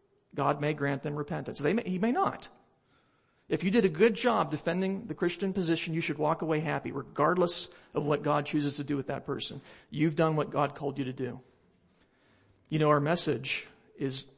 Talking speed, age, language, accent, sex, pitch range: 190 wpm, 40-59, English, American, male, 140-165 Hz